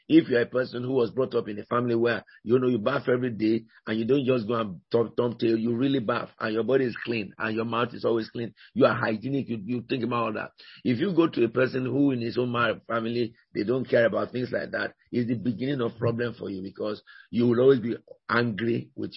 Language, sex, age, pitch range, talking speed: English, male, 50-69, 115-140 Hz, 250 wpm